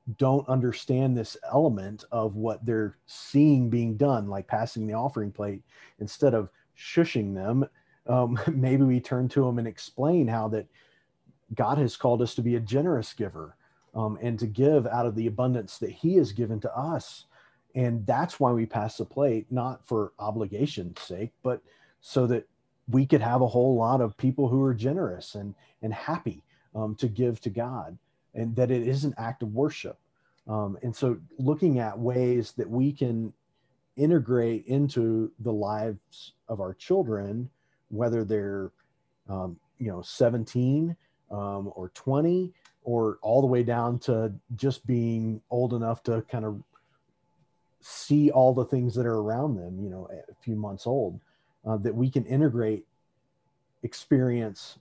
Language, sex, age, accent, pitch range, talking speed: English, male, 40-59, American, 110-135 Hz, 165 wpm